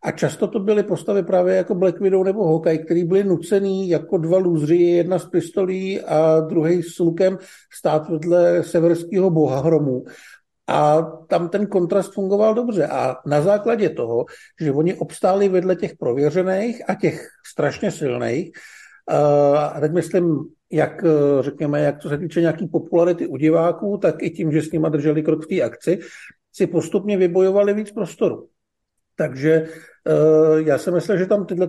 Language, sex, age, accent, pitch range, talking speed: Czech, male, 50-69, native, 160-195 Hz, 160 wpm